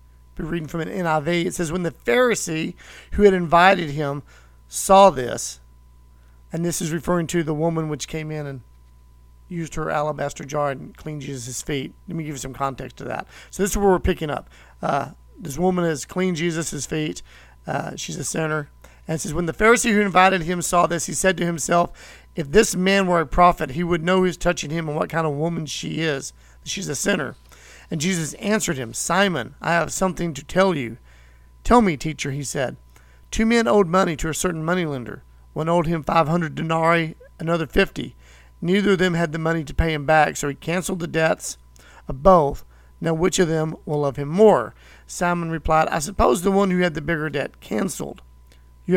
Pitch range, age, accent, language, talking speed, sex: 130-180 Hz, 40-59, American, English, 205 wpm, male